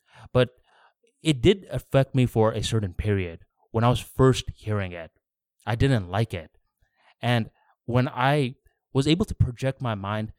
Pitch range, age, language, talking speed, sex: 105-130 Hz, 20-39, English, 160 wpm, male